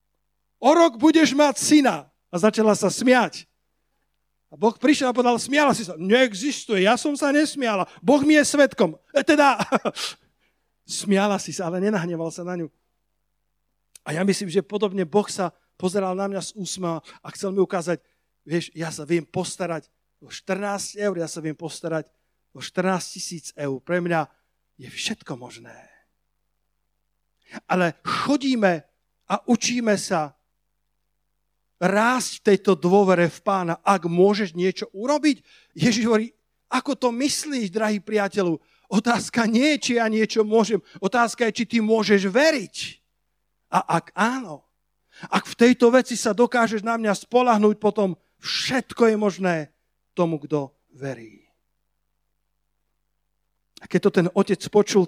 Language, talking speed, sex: Slovak, 145 wpm, male